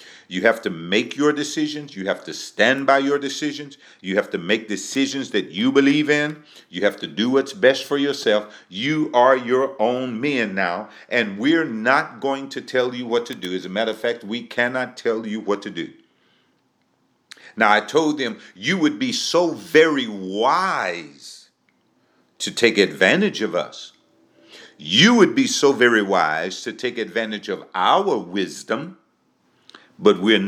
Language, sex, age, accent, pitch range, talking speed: English, male, 50-69, American, 115-155 Hz, 170 wpm